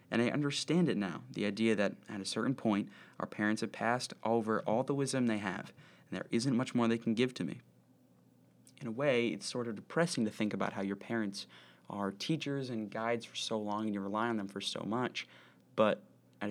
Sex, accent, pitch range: male, American, 105-125 Hz